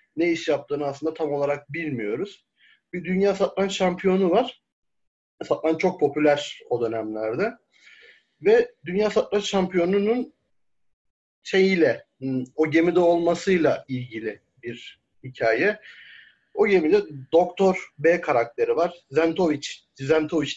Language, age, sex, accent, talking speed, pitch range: Turkish, 40-59, male, native, 105 wpm, 140-190 Hz